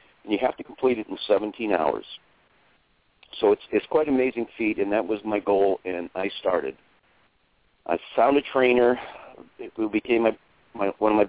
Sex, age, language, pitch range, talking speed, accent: male, 50-69, English, 105-130 Hz, 185 wpm, American